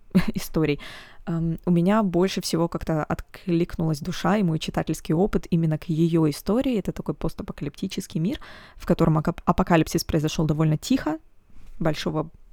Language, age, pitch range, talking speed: Russian, 20-39, 160-190 Hz, 130 wpm